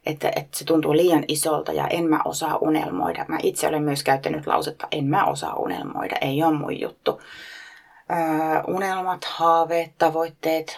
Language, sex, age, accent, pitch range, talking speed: Finnish, female, 30-49, native, 150-185 Hz, 150 wpm